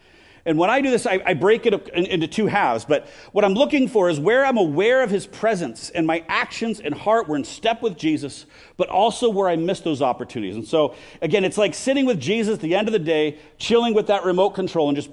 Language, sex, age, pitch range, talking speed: English, male, 40-59, 160-225 Hz, 250 wpm